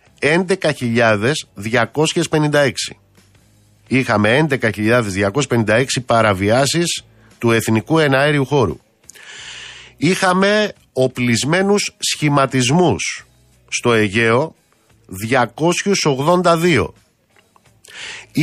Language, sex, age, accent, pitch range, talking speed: Greek, male, 50-69, native, 115-165 Hz, 45 wpm